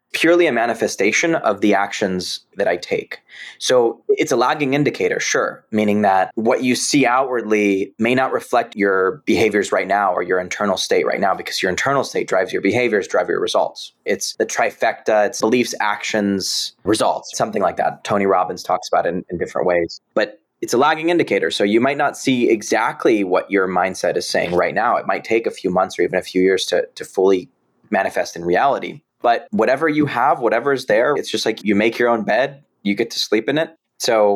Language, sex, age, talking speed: English, male, 20-39, 210 wpm